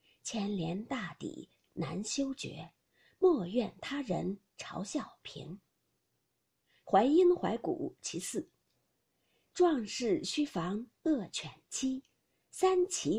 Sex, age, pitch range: female, 50-69, 205-310 Hz